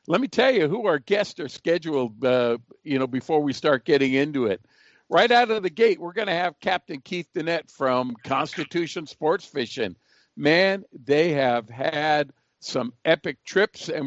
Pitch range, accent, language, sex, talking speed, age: 135-195 Hz, American, English, male, 180 wpm, 60-79